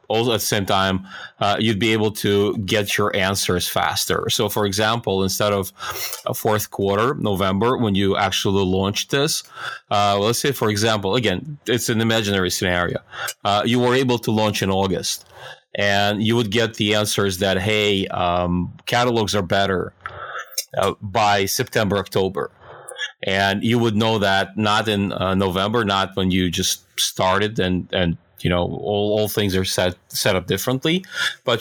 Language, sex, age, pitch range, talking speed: English, male, 40-59, 95-115 Hz, 170 wpm